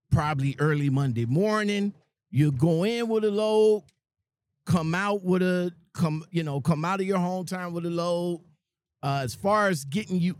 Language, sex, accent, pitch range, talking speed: English, male, American, 140-205 Hz, 180 wpm